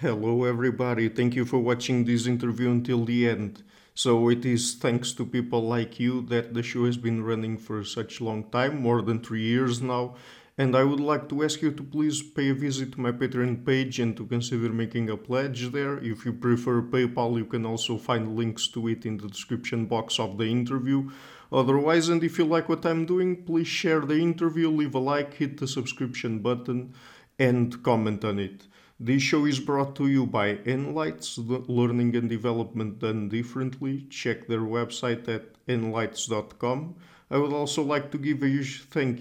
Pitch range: 115-130 Hz